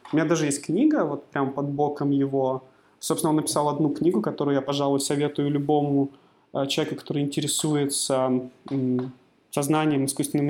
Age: 20-39